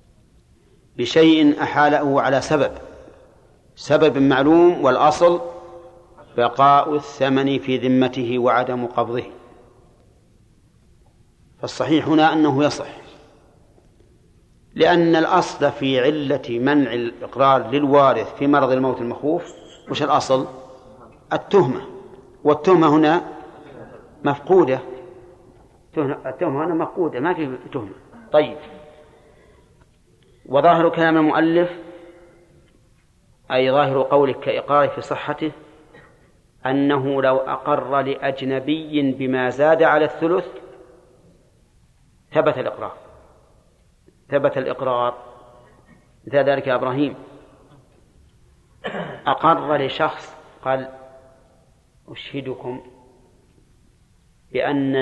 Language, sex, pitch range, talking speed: Arabic, male, 130-155 Hz, 75 wpm